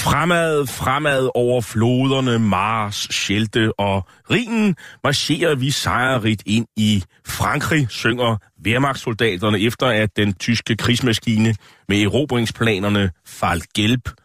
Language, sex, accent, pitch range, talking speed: Danish, male, native, 105-135 Hz, 105 wpm